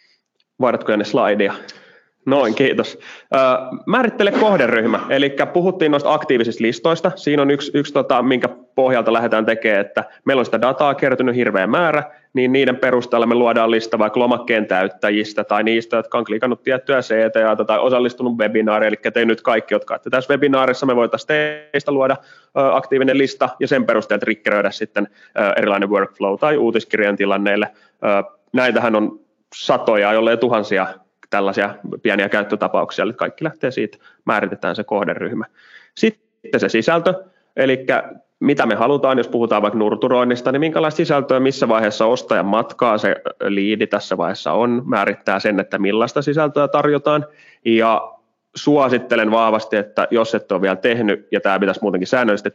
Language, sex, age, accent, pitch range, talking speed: Finnish, male, 20-39, native, 105-140 Hz, 150 wpm